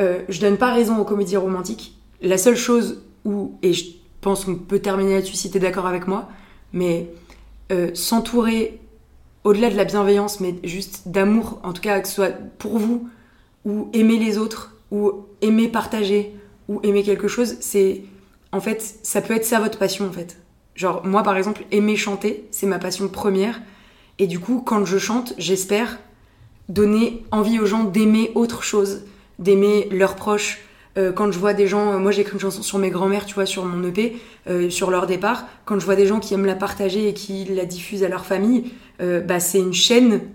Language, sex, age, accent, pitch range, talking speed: French, female, 20-39, French, 190-220 Hz, 200 wpm